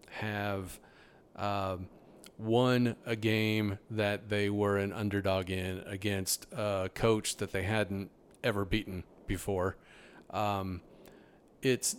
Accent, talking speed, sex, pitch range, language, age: American, 110 wpm, male, 100-120 Hz, English, 40-59